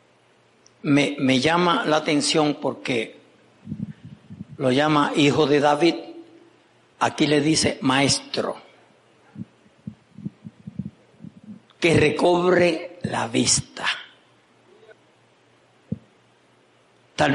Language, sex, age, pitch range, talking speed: Spanish, male, 60-79, 145-165 Hz, 70 wpm